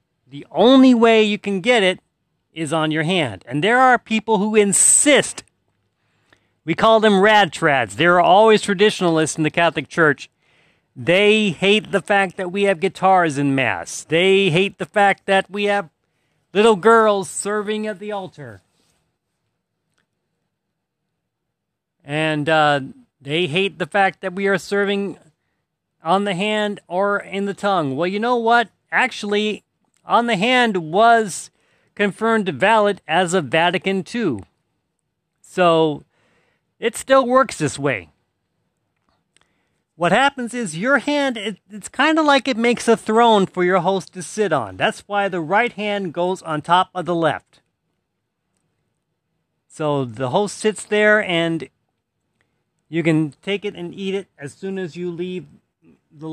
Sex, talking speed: male, 150 wpm